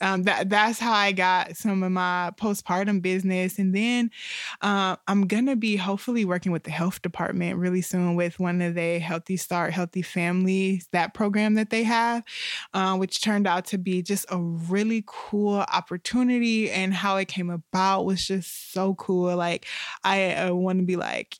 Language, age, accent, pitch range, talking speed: English, 20-39, American, 175-205 Hz, 185 wpm